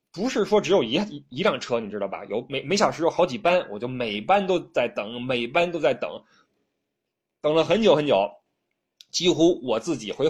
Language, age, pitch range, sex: Chinese, 20-39, 120-185 Hz, male